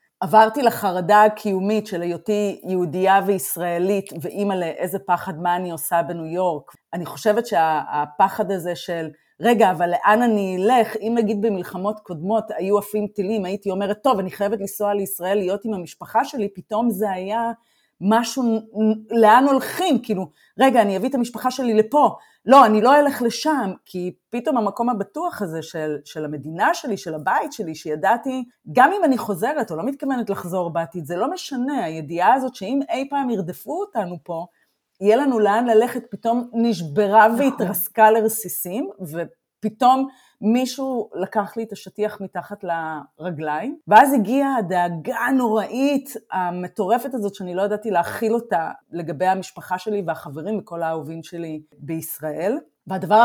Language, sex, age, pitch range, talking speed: Hebrew, female, 30-49, 180-230 Hz, 150 wpm